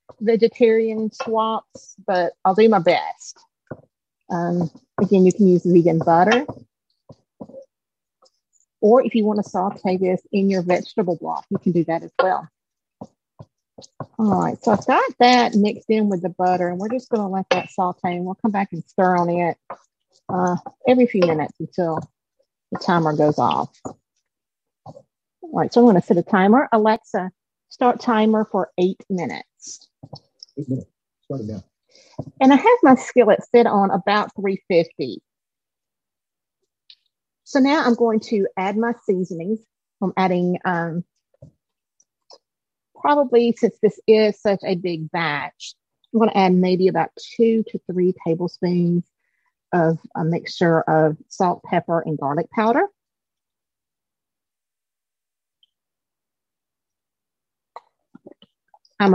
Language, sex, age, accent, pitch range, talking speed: English, female, 50-69, American, 175-230 Hz, 130 wpm